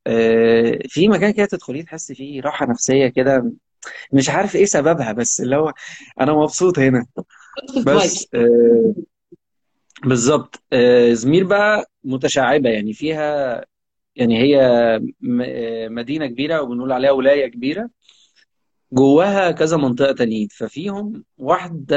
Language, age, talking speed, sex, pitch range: Arabic, 20-39, 110 wpm, male, 130-185 Hz